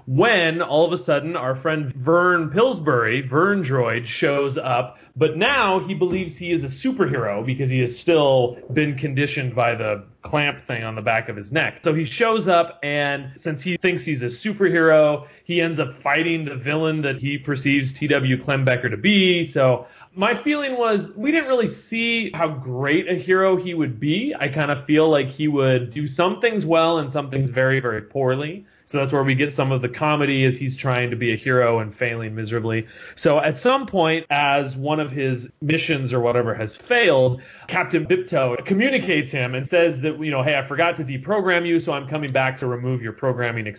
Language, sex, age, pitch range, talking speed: English, male, 30-49, 130-165 Hz, 205 wpm